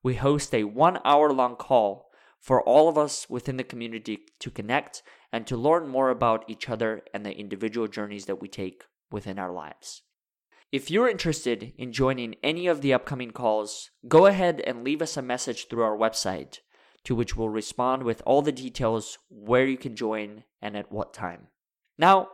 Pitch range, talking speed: 105-125 Hz, 185 wpm